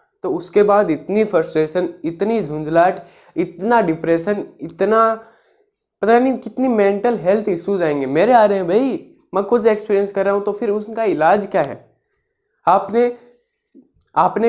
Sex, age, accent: male, 20-39, native